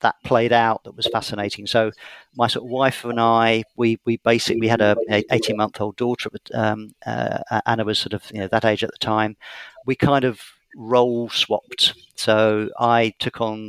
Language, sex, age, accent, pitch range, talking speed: English, male, 50-69, British, 110-125 Hz, 200 wpm